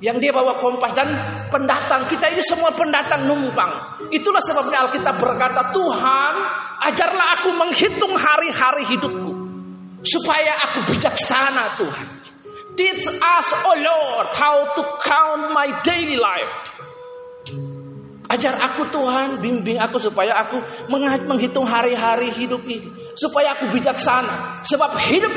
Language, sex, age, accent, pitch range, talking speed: Indonesian, male, 40-59, native, 210-305 Hz, 120 wpm